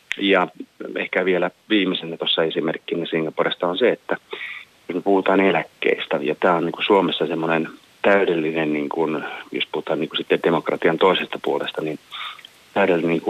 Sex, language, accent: male, Finnish, native